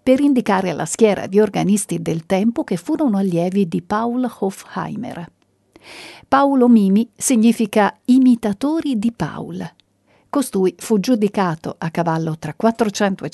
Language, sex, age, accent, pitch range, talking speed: Italian, female, 50-69, native, 185-250 Hz, 125 wpm